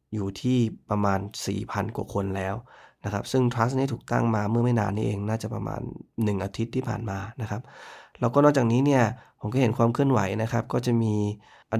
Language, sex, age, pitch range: Thai, male, 20-39, 105-120 Hz